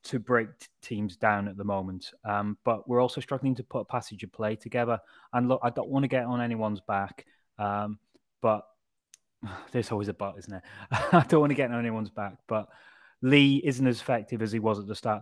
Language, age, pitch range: English, 20-39, 115-140 Hz